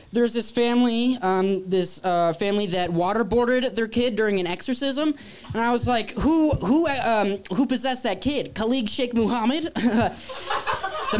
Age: 10-29